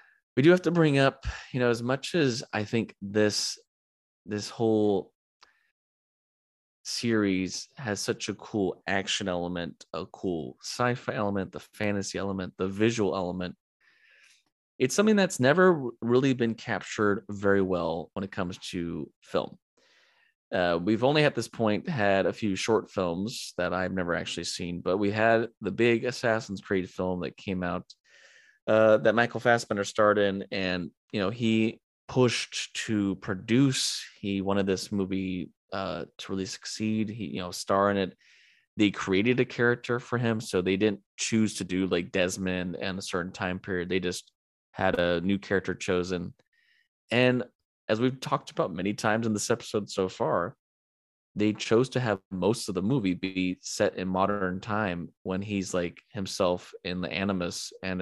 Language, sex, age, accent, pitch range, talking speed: English, male, 30-49, American, 95-115 Hz, 165 wpm